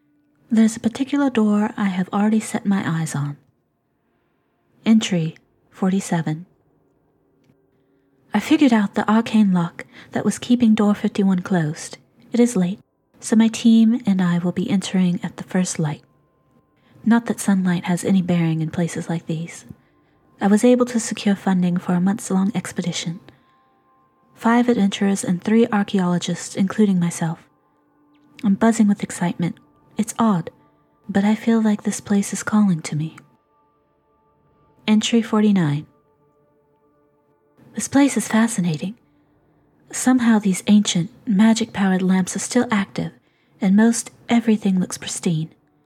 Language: English